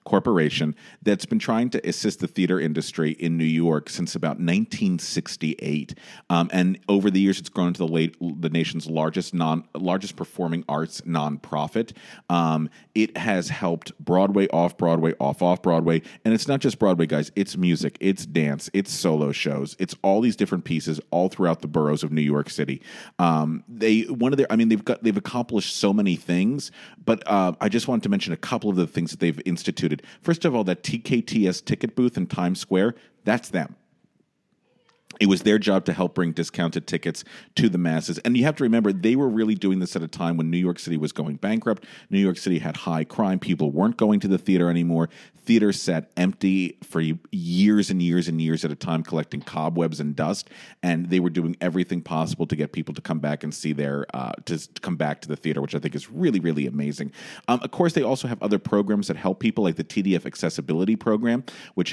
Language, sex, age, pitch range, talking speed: English, male, 40-59, 80-105 Hz, 210 wpm